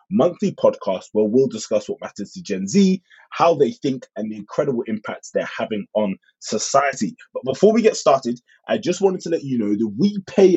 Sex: male